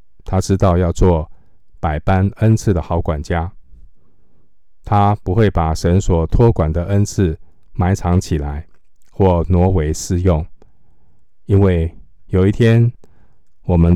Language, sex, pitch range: Chinese, male, 80-95 Hz